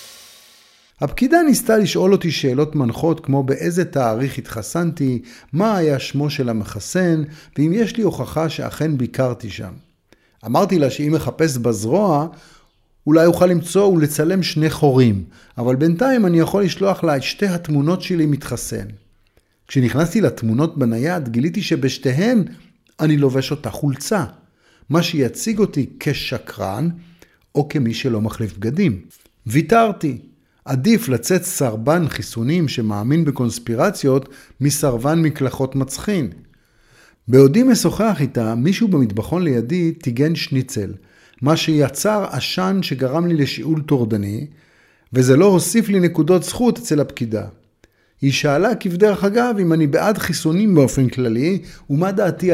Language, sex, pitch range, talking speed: Hebrew, male, 125-175 Hz, 120 wpm